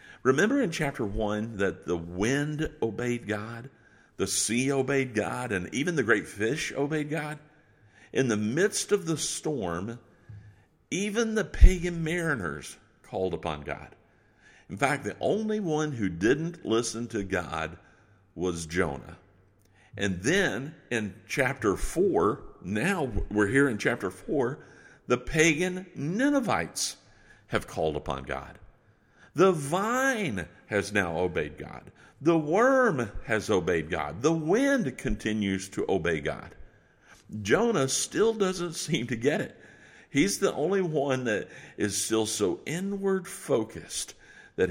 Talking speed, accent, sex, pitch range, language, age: 130 wpm, American, male, 100-155 Hz, English, 50-69